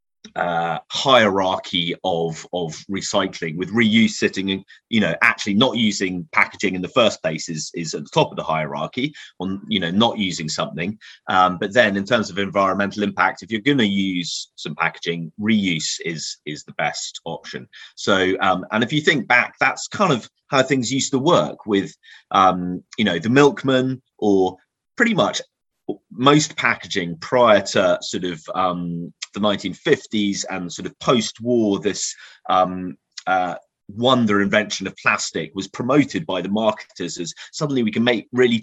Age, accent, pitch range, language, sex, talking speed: 30-49, British, 90-115 Hz, English, male, 170 wpm